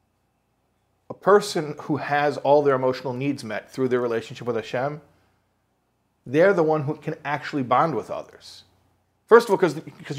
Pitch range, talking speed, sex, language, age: 120-165 Hz, 155 wpm, male, English, 40-59